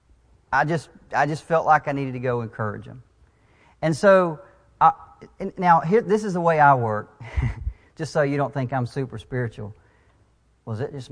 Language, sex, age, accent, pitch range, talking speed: English, male, 40-59, American, 115-150 Hz, 190 wpm